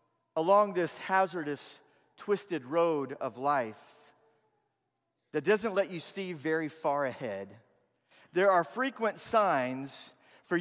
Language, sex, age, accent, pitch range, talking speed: English, male, 50-69, American, 150-205 Hz, 115 wpm